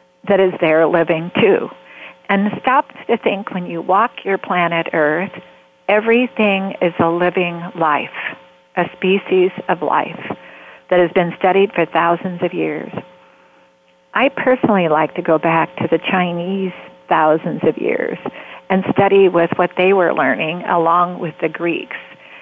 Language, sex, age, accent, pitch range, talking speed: English, female, 50-69, American, 155-195 Hz, 145 wpm